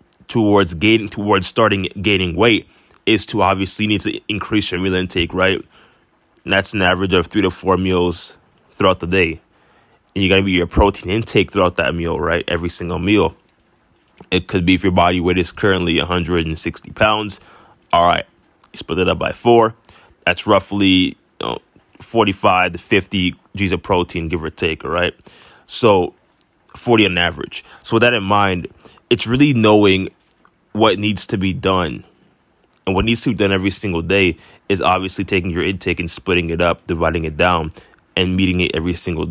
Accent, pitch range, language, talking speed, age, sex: American, 90-105 Hz, English, 185 wpm, 20-39, male